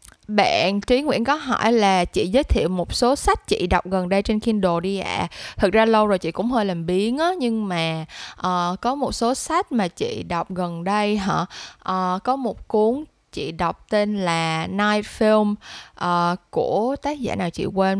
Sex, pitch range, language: female, 185-235 Hz, Vietnamese